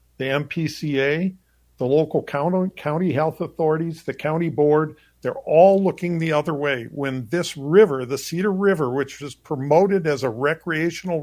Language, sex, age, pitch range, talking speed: English, male, 50-69, 135-170 Hz, 155 wpm